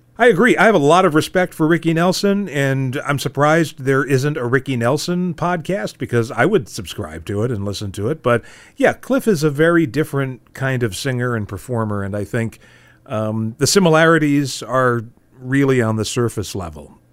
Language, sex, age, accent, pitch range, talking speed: English, male, 40-59, American, 115-170 Hz, 190 wpm